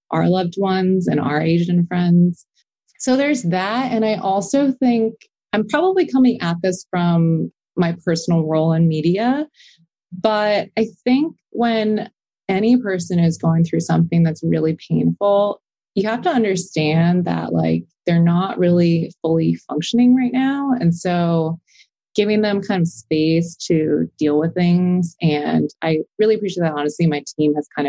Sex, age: female, 20-39